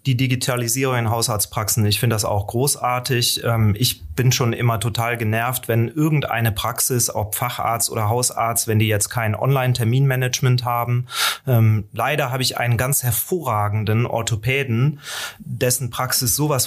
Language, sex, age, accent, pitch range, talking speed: German, male, 30-49, German, 115-130 Hz, 135 wpm